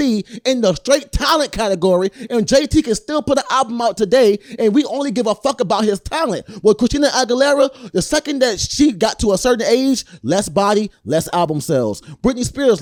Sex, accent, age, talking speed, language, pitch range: male, American, 20-39, 195 wpm, English, 205-265 Hz